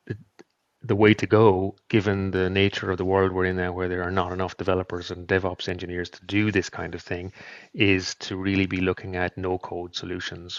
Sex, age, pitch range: male, 30-49, 90-105 Hz